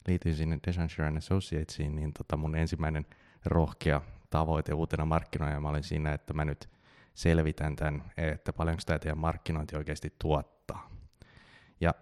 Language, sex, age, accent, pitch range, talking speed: Finnish, male, 30-49, native, 75-85 Hz, 135 wpm